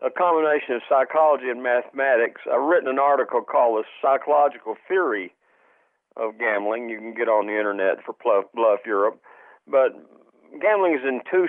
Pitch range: 120-175 Hz